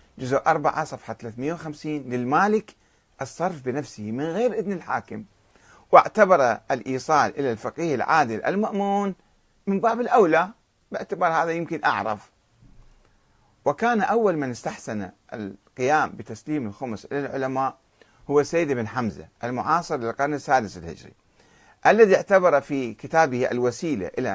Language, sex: Arabic, male